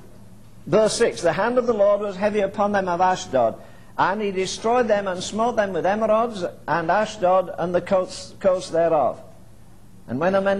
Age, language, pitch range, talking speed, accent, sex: 60-79, English, 175-215 Hz, 185 wpm, British, male